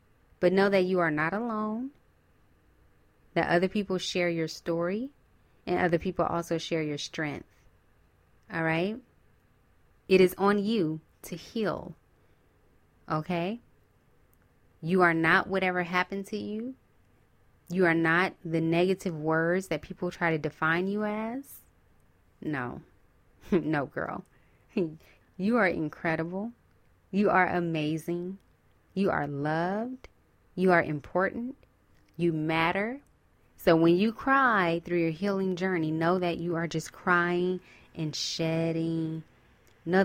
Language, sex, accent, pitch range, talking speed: English, female, American, 155-185 Hz, 125 wpm